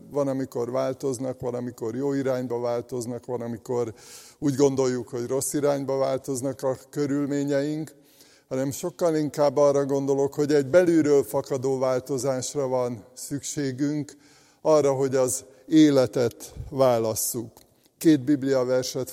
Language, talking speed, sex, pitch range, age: Hungarian, 115 wpm, male, 130-145 Hz, 50-69